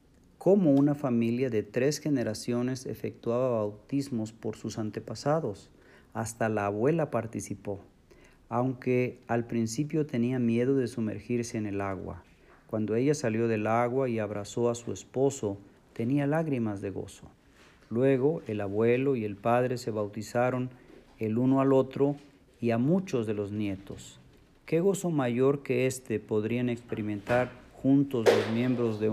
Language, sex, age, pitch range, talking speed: Spanish, male, 40-59, 110-130 Hz, 140 wpm